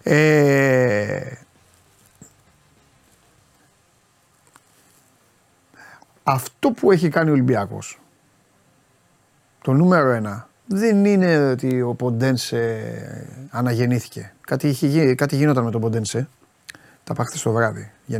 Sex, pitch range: male, 115-170 Hz